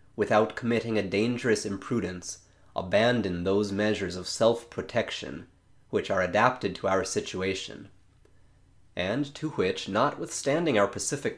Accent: American